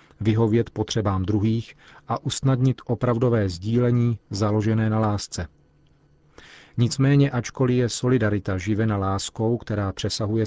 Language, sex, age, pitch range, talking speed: Czech, male, 40-59, 105-120 Hz, 105 wpm